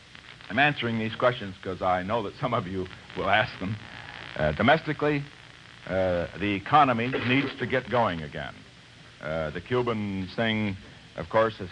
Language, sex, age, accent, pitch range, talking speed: English, male, 60-79, American, 95-120 Hz, 160 wpm